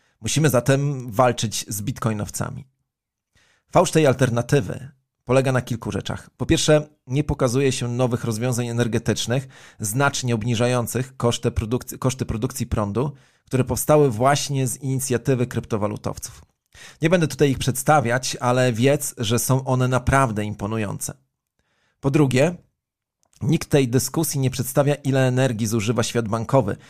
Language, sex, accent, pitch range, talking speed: Polish, male, native, 115-135 Hz, 125 wpm